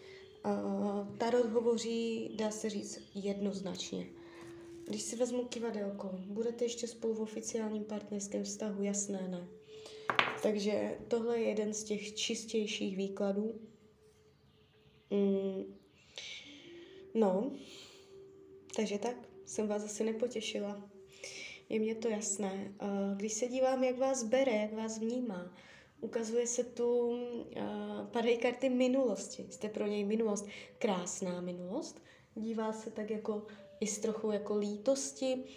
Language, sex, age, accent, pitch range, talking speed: Czech, female, 20-39, native, 200-245 Hz, 120 wpm